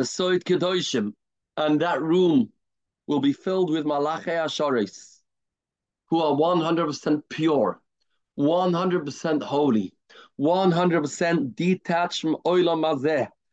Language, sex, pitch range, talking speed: English, male, 155-185 Hz, 110 wpm